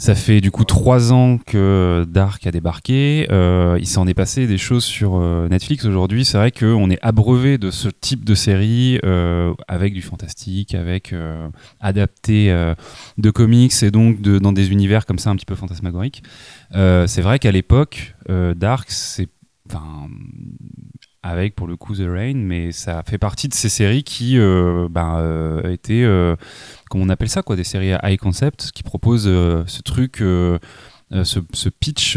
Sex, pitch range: male, 90-115 Hz